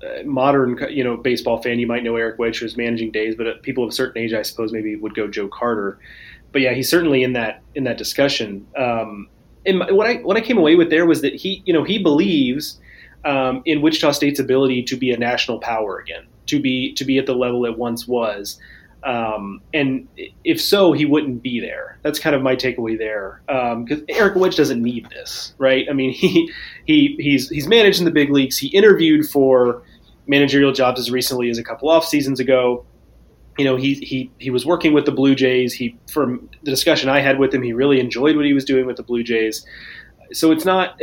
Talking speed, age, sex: 220 wpm, 30-49, male